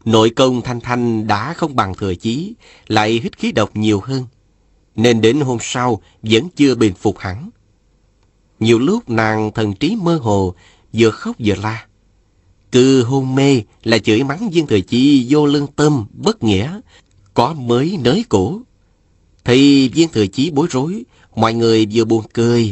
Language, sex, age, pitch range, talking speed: Vietnamese, male, 30-49, 100-130 Hz, 170 wpm